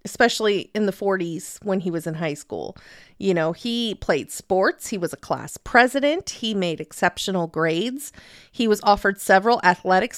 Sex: female